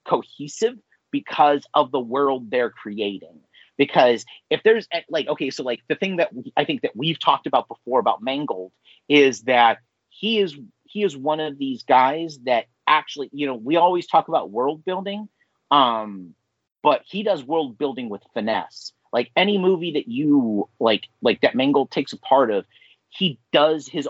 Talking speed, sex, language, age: 175 wpm, male, English, 30-49